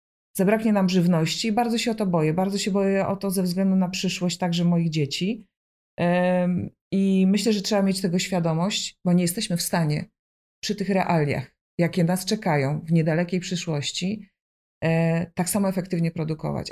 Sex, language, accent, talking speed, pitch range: female, Polish, native, 165 wpm, 155-190 Hz